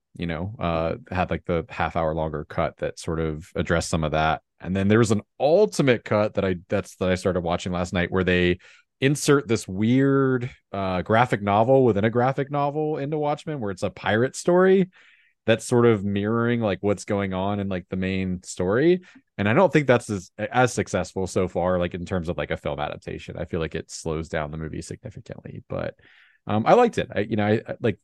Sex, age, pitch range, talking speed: male, 30-49, 90-120 Hz, 220 wpm